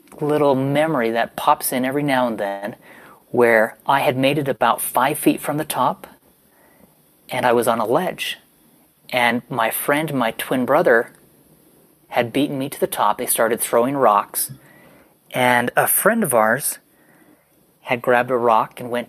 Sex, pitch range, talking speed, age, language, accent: male, 120-150 Hz, 165 wpm, 30-49, English, American